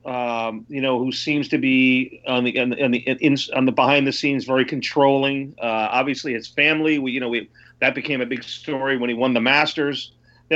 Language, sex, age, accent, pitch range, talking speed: English, male, 40-59, American, 120-150 Hz, 220 wpm